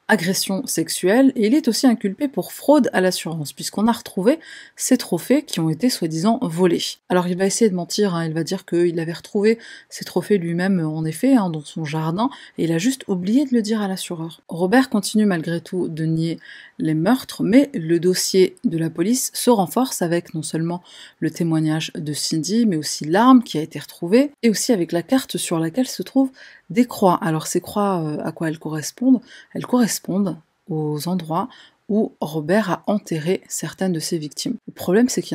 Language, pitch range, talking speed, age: French, 165-235 Hz, 200 wpm, 30-49